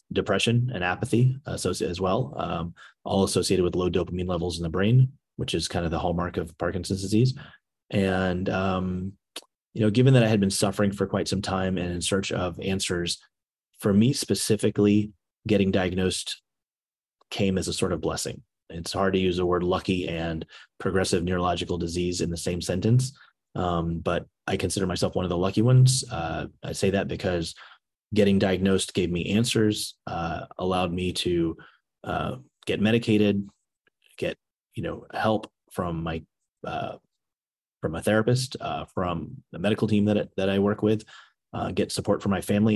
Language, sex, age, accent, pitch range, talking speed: English, male, 30-49, American, 90-105 Hz, 175 wpm